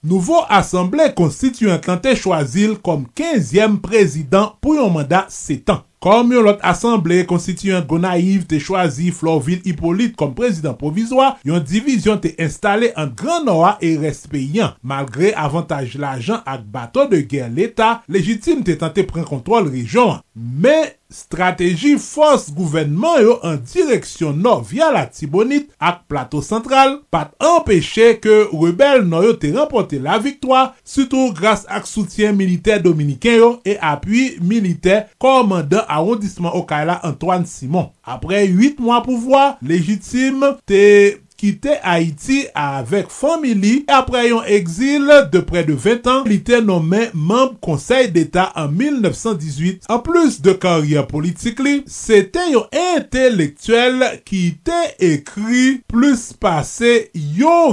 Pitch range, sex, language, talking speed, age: 170-240 Hz, male, French, 130 wpm, 30-49